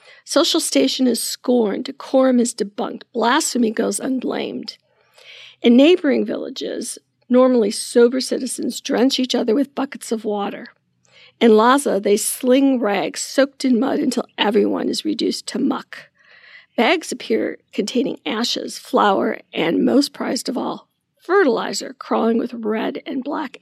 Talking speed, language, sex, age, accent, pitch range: 135 wpm, English, female, 50-69, American, 225-265 Hz